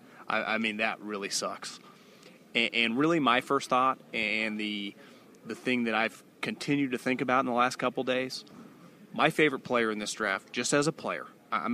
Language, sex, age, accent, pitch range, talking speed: English, male, 30-49, American, 110-130 Hz, 190 wpm